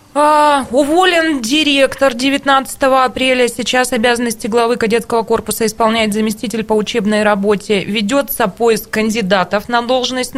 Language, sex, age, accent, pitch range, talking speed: Russian, female, 20-39, native, 220-265 Hz, 110 wpm